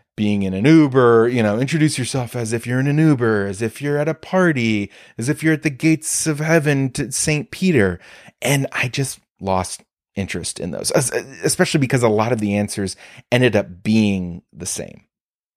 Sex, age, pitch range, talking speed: male, 30-49, 95-135 Hz, 195 wpm